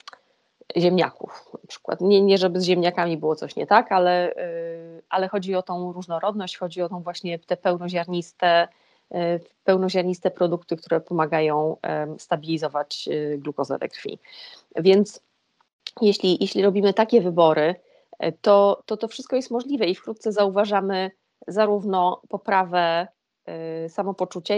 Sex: female